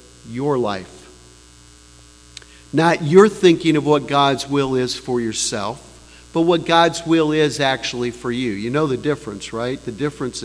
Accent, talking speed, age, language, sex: American, 155 wpm, 50-69, English, male